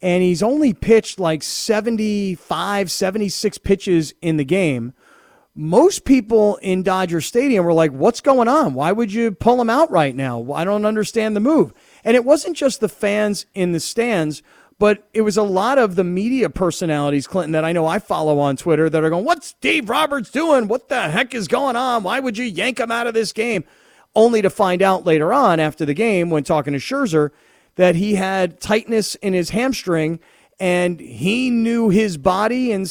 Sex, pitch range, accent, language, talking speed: male, 180-235 Hz, American, English, 200 wpm